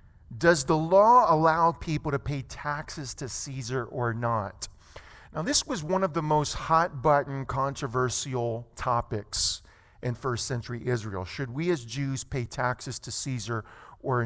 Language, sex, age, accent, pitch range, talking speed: English, male, 40-59, American, 130-175 Hz, 150 wpm